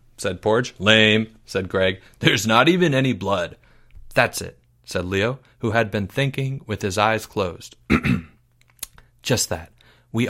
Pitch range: 110-140 Hz